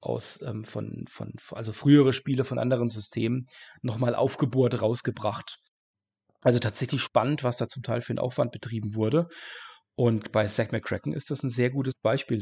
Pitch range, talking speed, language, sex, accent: 115-135 Hz, 155 wpm, German, male, German